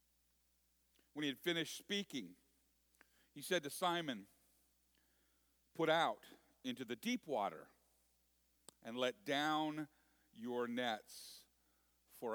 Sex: male